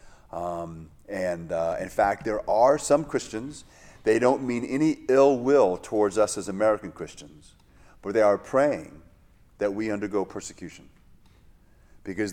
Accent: American